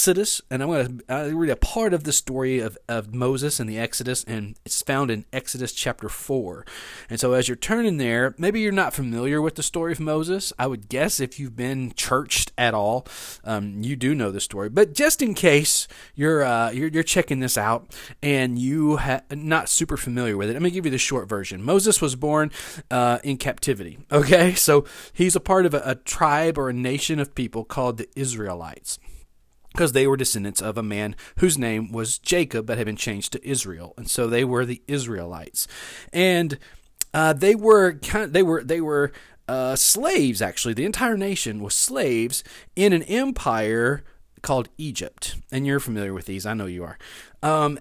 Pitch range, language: 115-160 Hz, English